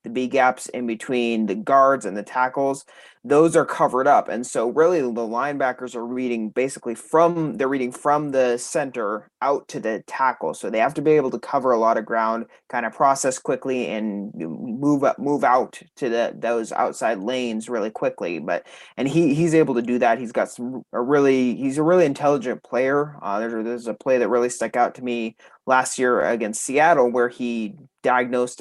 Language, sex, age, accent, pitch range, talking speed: English, male, 20-39, American, 115-140 Hz, 205 wpm